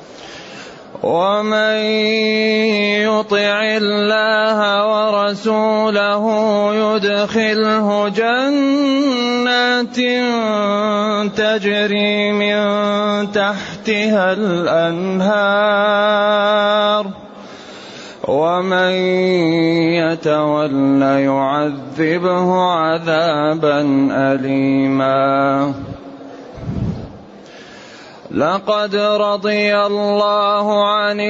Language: Arabic